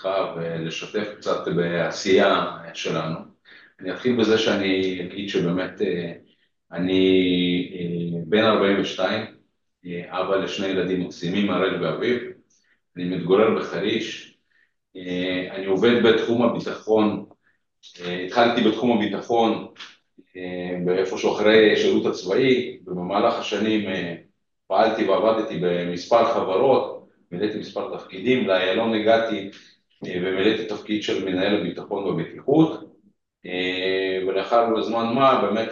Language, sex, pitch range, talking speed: Hebrew, male, 90-115 Hz, 90 wpm